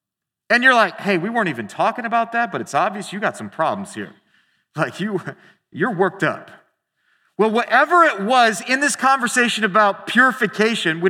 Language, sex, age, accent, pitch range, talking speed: English, male, 40-59, American, 195-255 Hz, 175 wpm